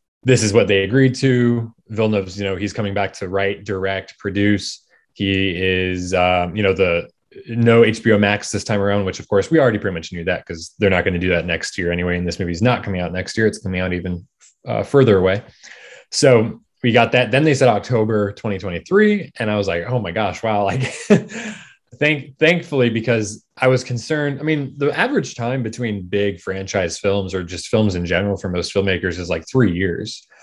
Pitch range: 95-115 Hz